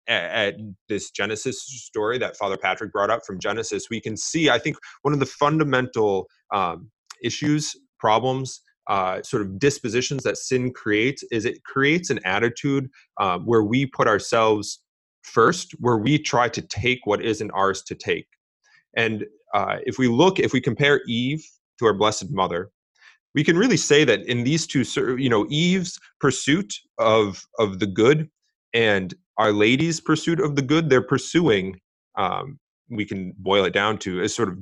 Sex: male